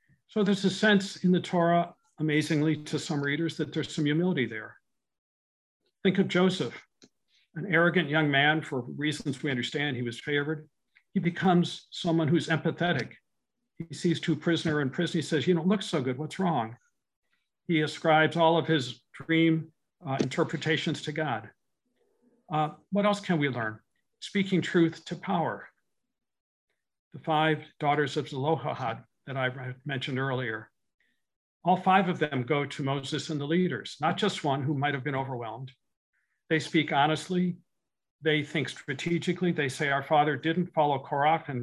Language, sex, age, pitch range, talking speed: English, male, 60-79, 145-170 Hz, 160 wpm